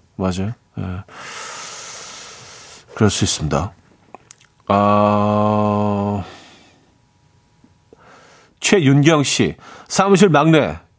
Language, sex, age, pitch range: Korean, male, 40-59, 115-170 Hz